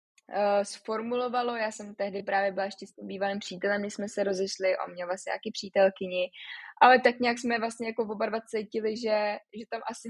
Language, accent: Czech, native